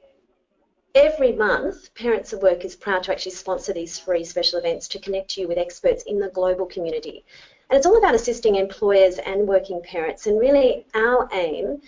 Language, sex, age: English, female, 30-49